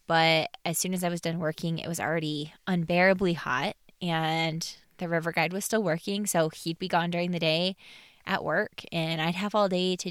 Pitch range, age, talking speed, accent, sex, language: 165-190 Hz, 20-39, 210 wpm, American, female, English